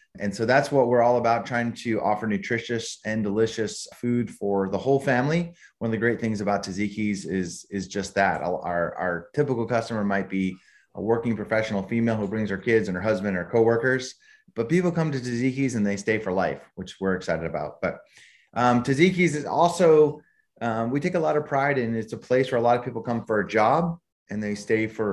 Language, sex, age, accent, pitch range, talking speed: English, male, 30-49, American, 100-125 Hz, 215 wpm